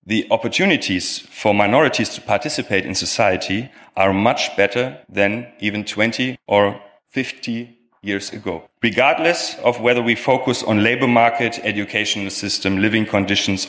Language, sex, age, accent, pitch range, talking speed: English, male, 30-49, German, 100-120 Hz, 130 wpm